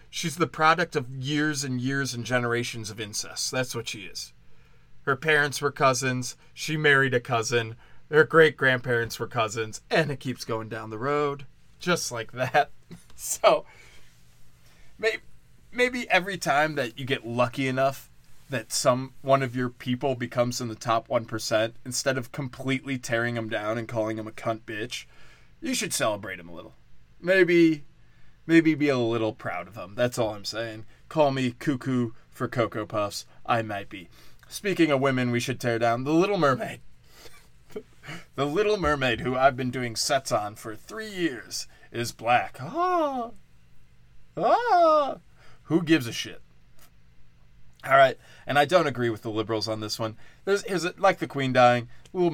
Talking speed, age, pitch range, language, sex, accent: 170 wpm, 20-39, 110-150 Hz, English, male, American